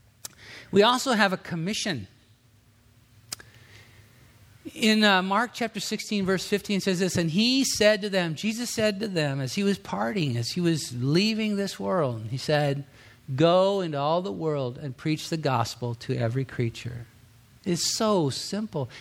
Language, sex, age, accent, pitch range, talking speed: English, male, 50-69, American, 125-190 Hz, 160 wpm